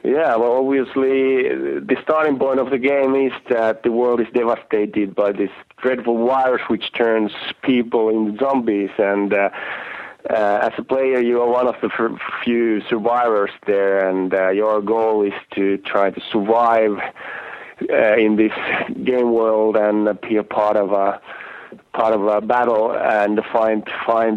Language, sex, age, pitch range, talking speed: English, male, 30-49, 105-120 Hz, 160 wpm